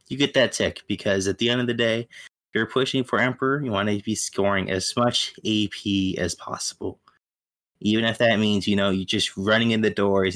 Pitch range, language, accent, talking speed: 90-110 Hz, English, American, 220 wpm